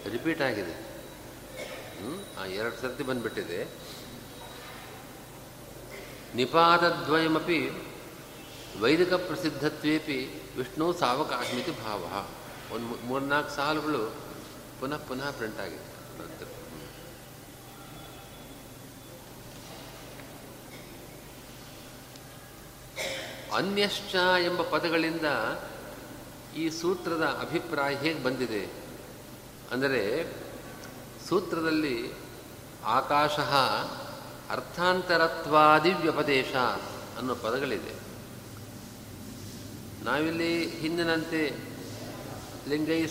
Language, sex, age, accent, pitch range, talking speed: Kannada, male, 50-69, native, 135-160 Hz, 50 wpm